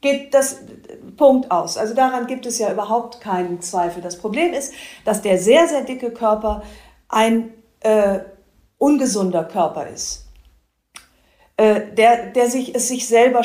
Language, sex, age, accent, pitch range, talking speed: German, female, 40-59, German, 195-255 Hz, 145 wpm